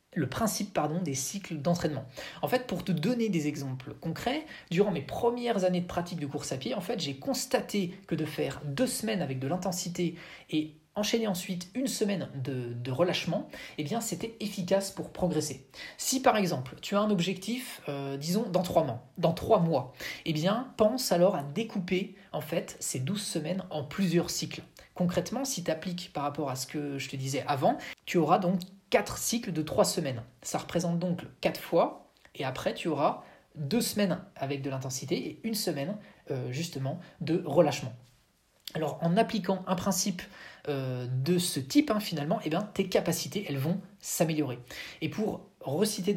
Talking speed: 185 wpm